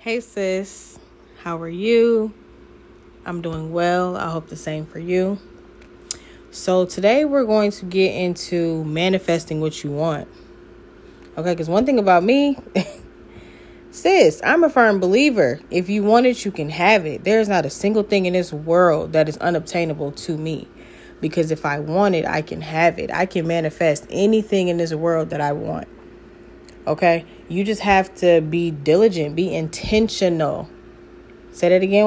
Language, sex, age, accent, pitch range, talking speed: English, female, 20-39, American, 160-205 Hz, 165 wpm